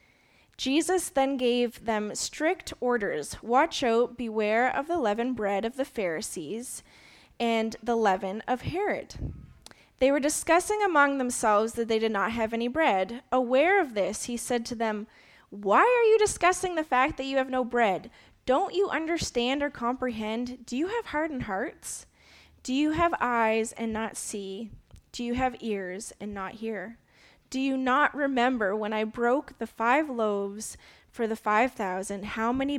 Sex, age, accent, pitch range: female, 20-39, American, 220-280 Hz